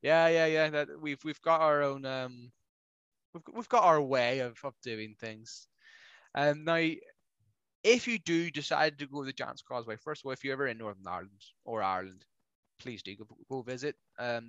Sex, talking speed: male, 205 wpm